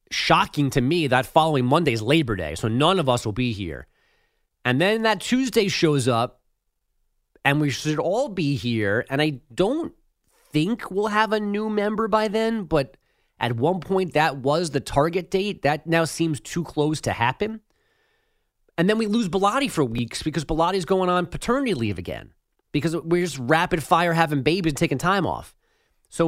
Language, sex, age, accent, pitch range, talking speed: English, male, 30-49, American, 120-170 Hz, 185 wpm